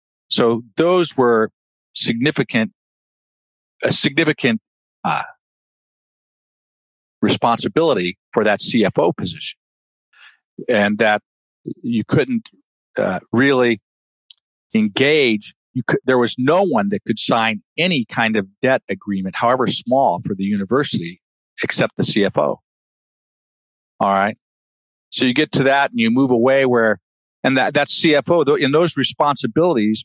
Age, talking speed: 50-69, 120 wpm